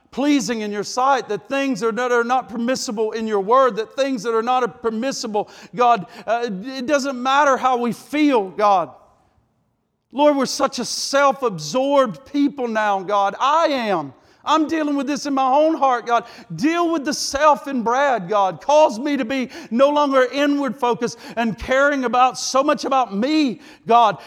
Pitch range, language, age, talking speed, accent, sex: 235-280 Hz, English, 50-69, 175 wpm, American, male